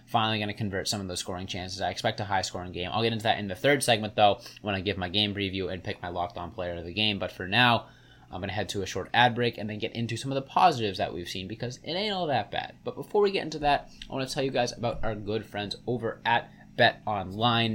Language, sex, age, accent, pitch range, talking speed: English, male, 20-39, American, 105-120 Hz, 290 wpm